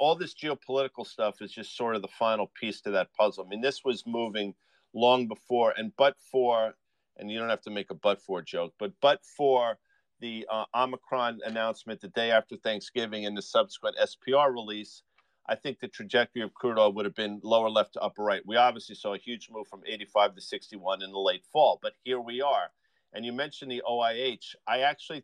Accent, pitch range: American, 110-145 Hz